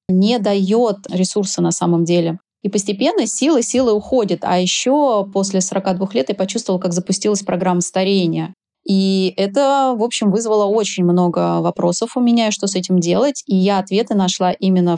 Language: Russian